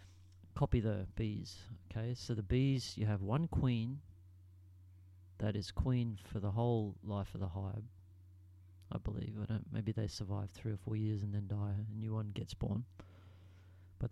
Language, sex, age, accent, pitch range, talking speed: English, male, 40-59, Australian, 90-120 Hz, 175 wpm